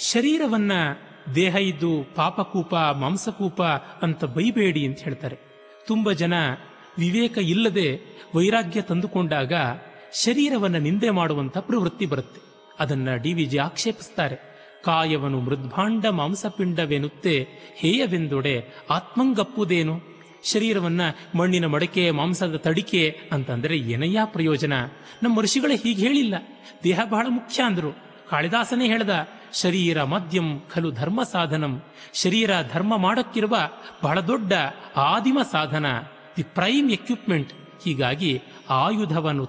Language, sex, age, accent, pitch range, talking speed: Kannada, male, 30-49, native, 155-220 Hz, 100 wpm